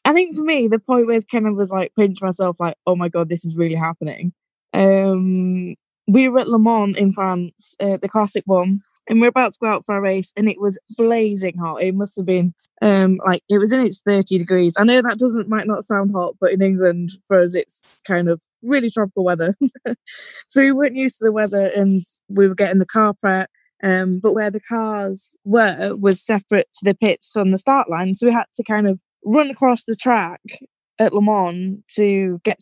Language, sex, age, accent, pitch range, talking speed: English, female, 20-39, British, 185-225 Hz, 225 wpm